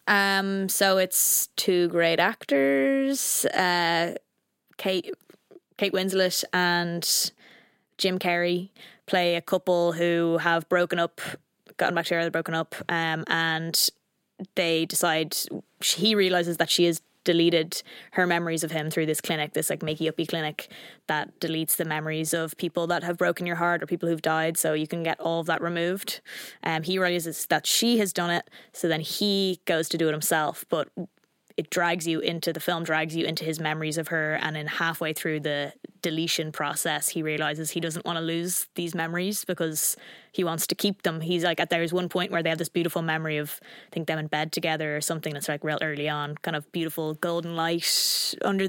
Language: English